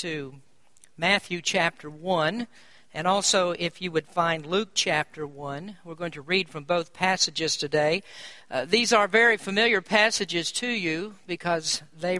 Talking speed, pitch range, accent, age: 150 wpm, 170-210 Hz, American, 50-69